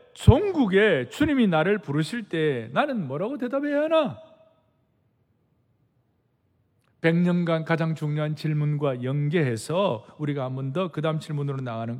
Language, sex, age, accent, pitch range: Korean, male, 40-59, native, 150-250 Hz